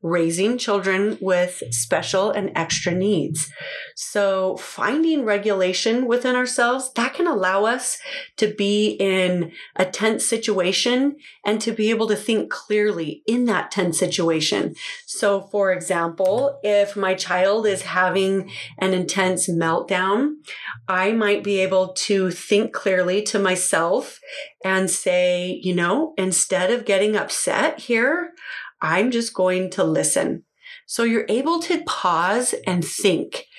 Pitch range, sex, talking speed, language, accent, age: 185-230 Hz, female, 130 wpm, English, American, 30-49